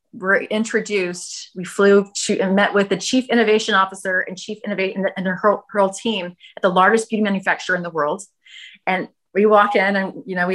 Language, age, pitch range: English, 30-49, 175-205 Hz